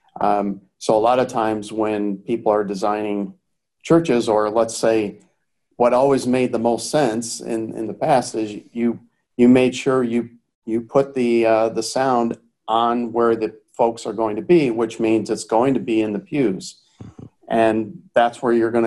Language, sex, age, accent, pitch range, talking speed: English, male, 50-69, American, 110-125 Hz, 185 wpm